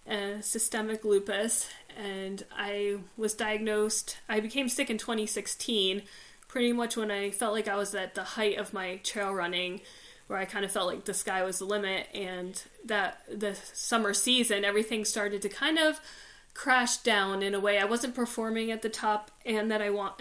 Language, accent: English, American